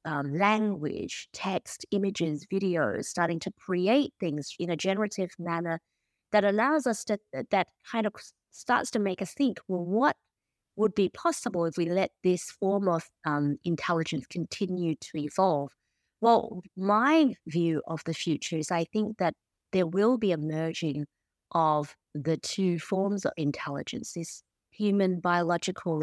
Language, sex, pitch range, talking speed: English, female, 150-195 Hz, 150 wpm